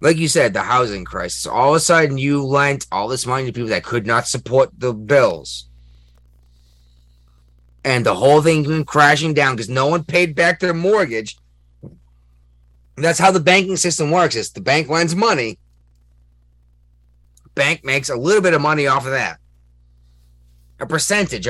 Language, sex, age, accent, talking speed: English, male, 30-49, American, 165 wpm